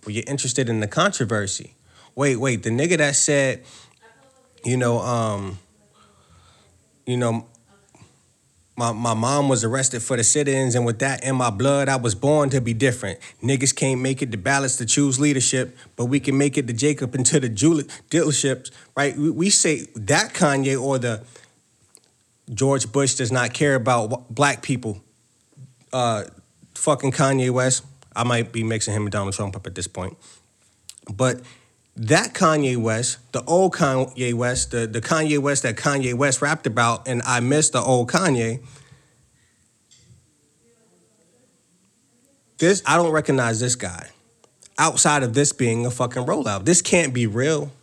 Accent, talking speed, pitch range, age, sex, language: American, 165 wpm, 115-140 Hz, 30-49, male, English